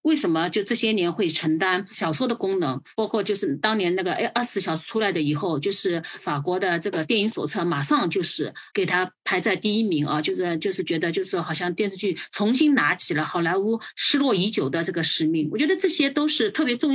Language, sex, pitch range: Chinese, female, 195-290 Hz